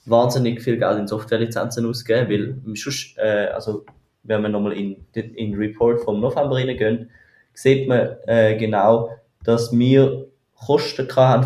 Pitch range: 110-130 Hz